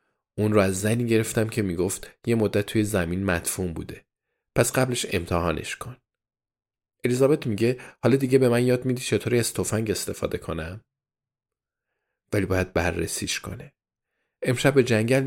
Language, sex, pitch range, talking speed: Persian, male, 95-120 Hz, 140 wpm